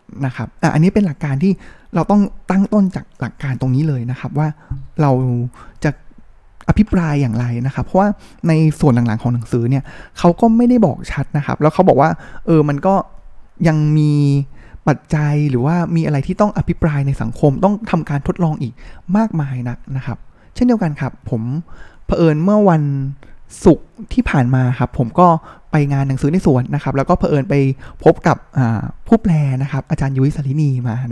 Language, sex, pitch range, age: Thai, male, 135-175 Hz, 20-39